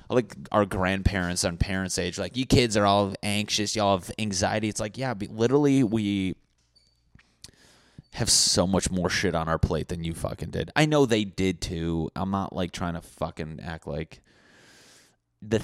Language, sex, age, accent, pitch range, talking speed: English, male, 30-49, American, 85-110 Hz, 185 wpm